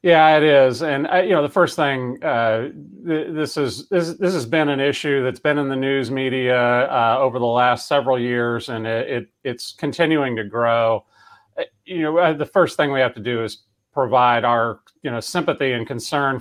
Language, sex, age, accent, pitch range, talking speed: English, male, 40-59, American, 115-140 Hz, 195 wpm